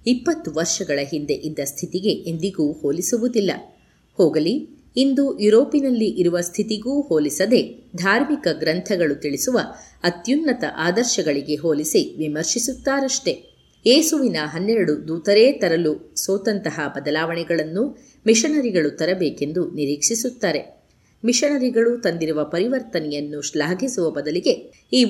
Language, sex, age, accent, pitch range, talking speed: Kannada, female, 30-49, native, 155-235 Hz, 80 wpm